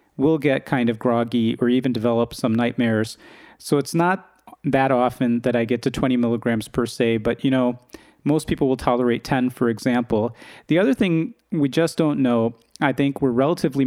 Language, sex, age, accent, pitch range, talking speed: English, male, 30-49, American, 120-145 Hz, 190 wpm